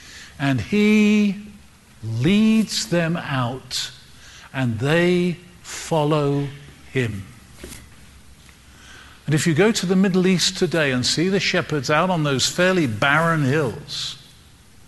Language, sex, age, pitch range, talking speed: English, male, 50-69, 145-210 Hz, 115 wpm